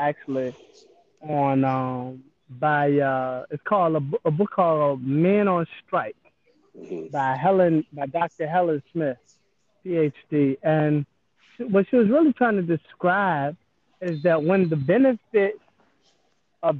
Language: English